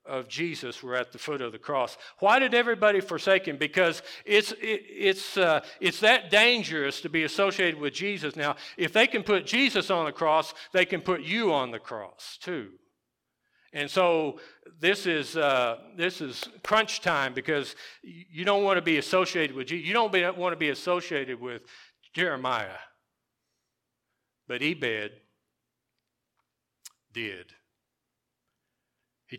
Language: English